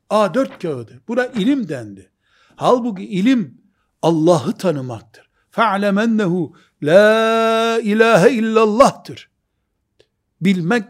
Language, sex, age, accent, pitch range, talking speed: Turkish, male, 60-79, native, 160-235 Hz, 85 wpm